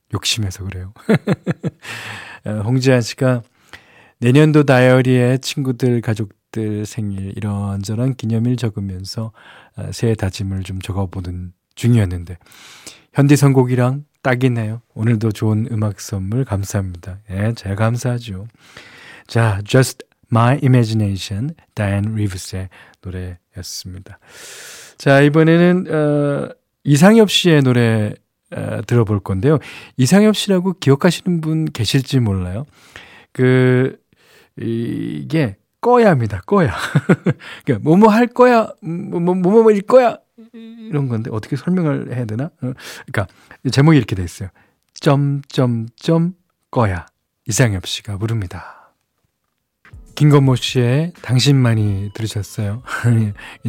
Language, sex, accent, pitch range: Korean, male, native, 105-140 Hz